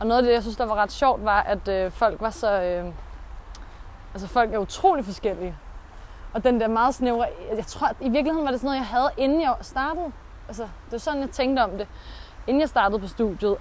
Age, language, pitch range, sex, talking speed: 20-39, Danish, 185-245 Hz, female, 240 wpm